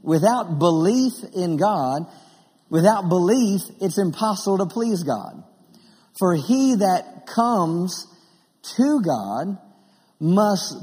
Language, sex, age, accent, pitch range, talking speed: English, male, 50-69, American, 175-220 Hz, 100 wpm